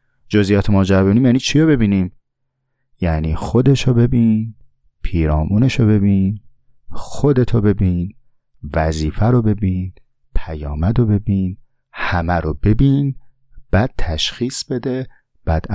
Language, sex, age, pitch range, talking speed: Persian, male, 30-49, 85-110 Hz, 115 wpm